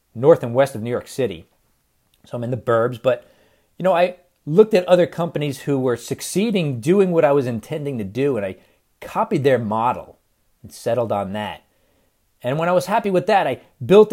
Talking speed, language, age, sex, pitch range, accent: 205 wpm, English, 40-59, male, 115-180 Hz, American